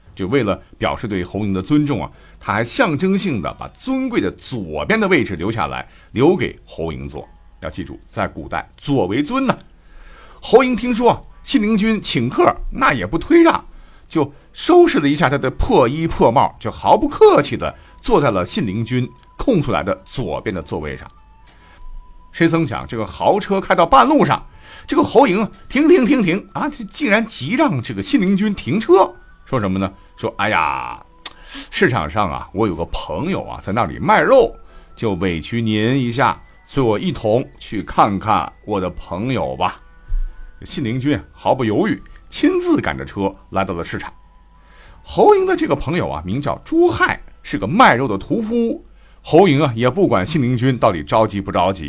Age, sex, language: 50-69, male, Chinese